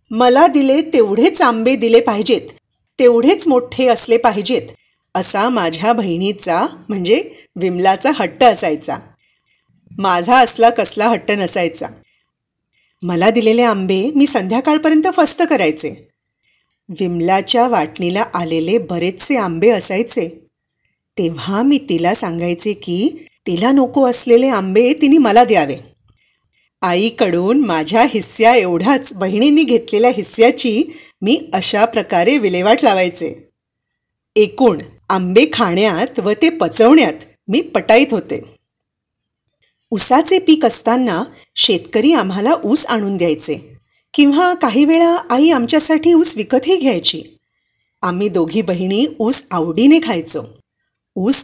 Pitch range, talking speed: 185-265 Hz, 105 wpm